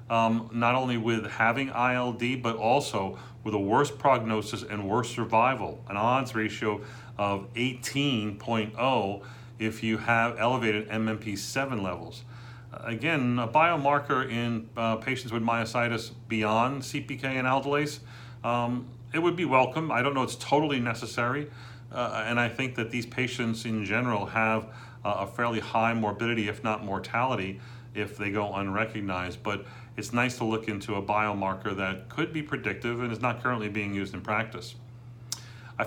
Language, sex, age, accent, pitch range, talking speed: English, male, 40-59, American, 110-125 Hz, 155 wpm